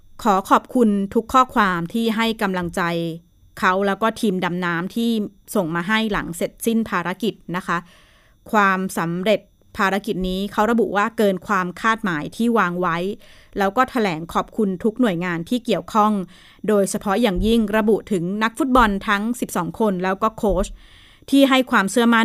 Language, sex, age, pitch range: Thai, female, 20-39, 185-225 Hz